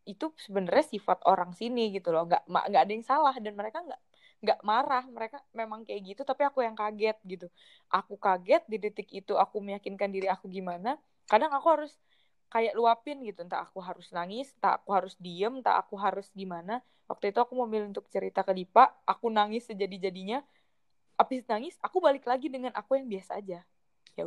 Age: 20-39